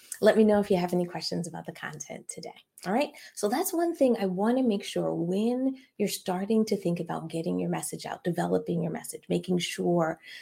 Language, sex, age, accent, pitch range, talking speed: English, female, 30-49, American, 180-245 Hz, 220 wpm